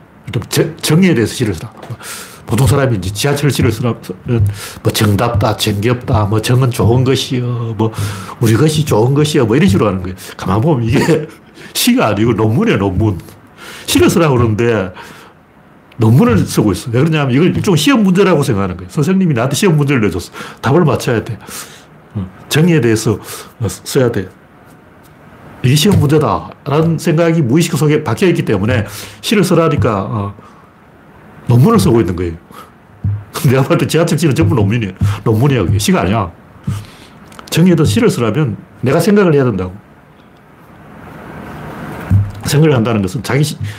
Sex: male